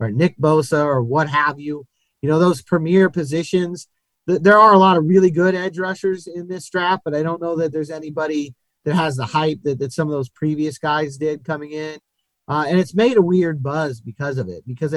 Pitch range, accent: 150-180 Hz, American